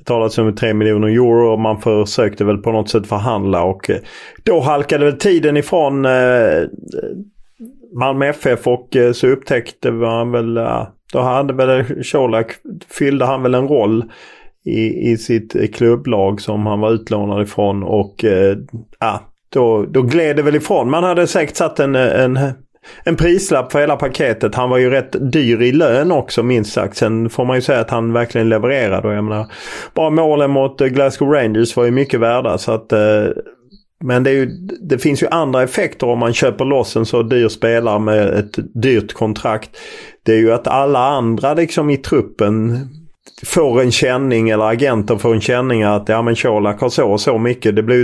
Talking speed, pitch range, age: 180 wpm, 110-135 Hz, 30-49